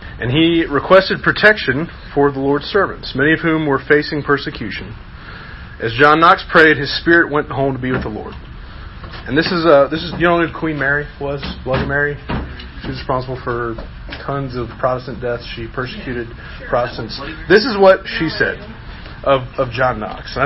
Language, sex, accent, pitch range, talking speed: English, male, American, 120-160 Hz, 180 wpm